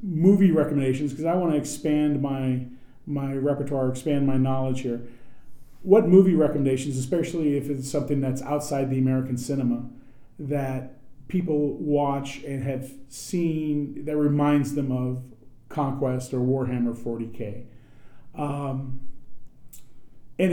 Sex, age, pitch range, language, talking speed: male, 40-59, 125-150 Hz, English, 125 wpm